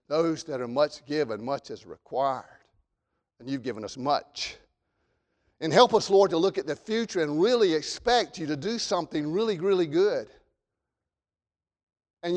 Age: 50-69